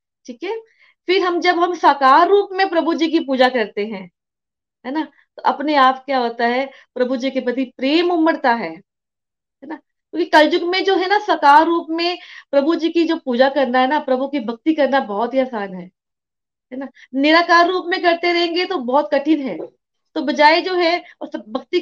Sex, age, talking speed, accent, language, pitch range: female, 30-49, 205 wpm, native, Hindi, 255-335 Hz